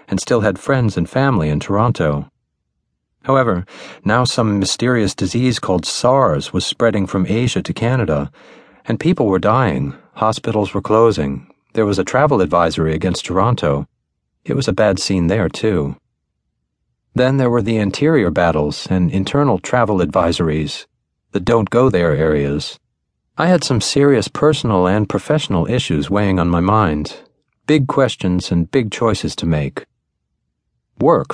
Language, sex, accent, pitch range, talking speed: English, male, American, 80-120 Hz, 145 wpm